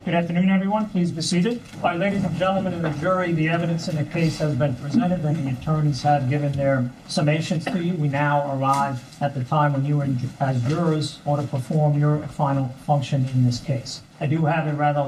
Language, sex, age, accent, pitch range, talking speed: English, male, 50-69, American, 130-155 Hz, 210 wpm